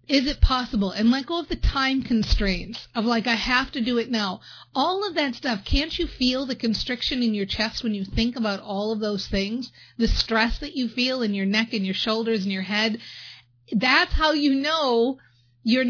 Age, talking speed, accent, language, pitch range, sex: 40-59, 215 wpm, American, English, 200-255 Hz, female